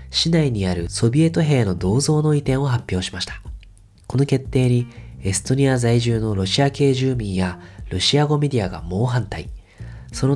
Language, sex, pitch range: Japanese, male, 95-135 Hz